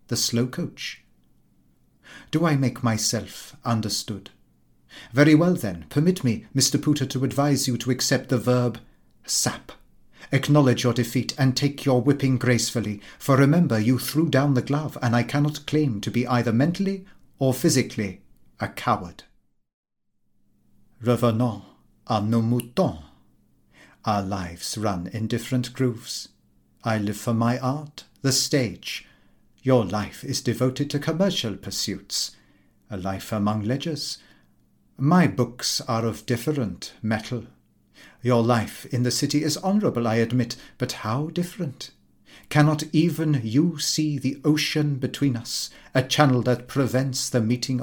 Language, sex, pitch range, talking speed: English, male, 115-140 Hz, 140 wpm